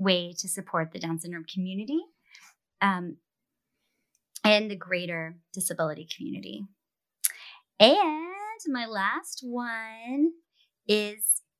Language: English